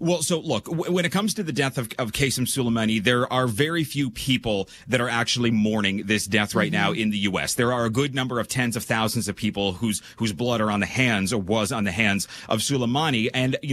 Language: English